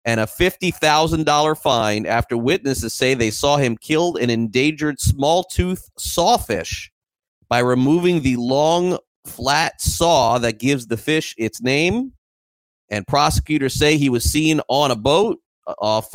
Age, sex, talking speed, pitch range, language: 30-49, male, 140 wpm, 110-145 Hz, English